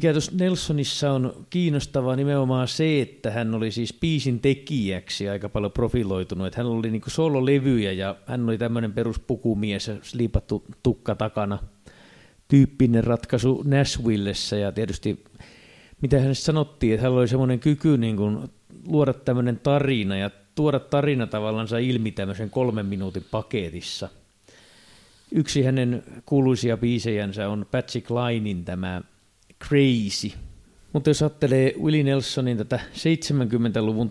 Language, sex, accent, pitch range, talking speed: Finnish, male, native, 105-130 Hz, 125 wpm